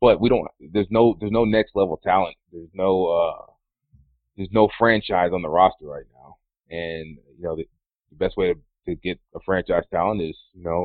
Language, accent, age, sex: English, American, 30-49, male